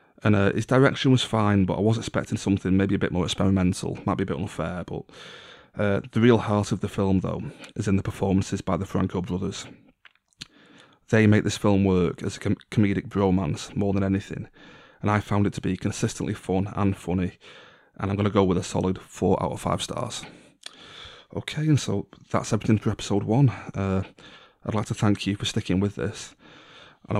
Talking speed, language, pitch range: 200 wpm, English, 95-105 Hz